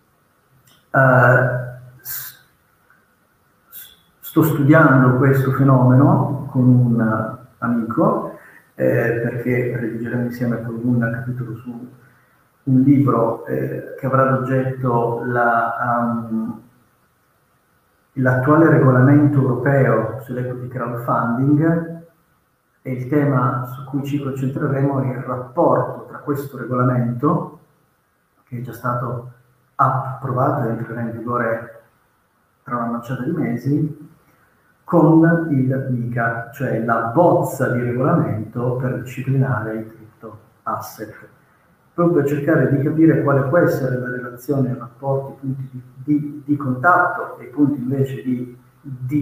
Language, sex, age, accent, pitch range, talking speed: Italian, male, 50-69, native, 120-140 Hz, 115 wpm